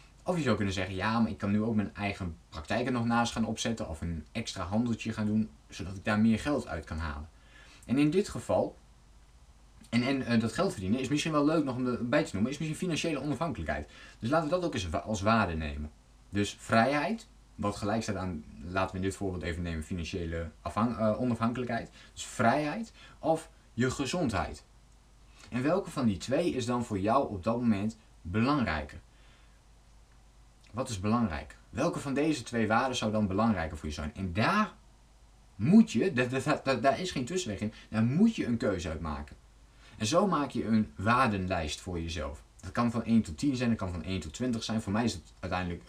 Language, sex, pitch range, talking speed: Dutch, male, 90-120 Hz, 200 wpm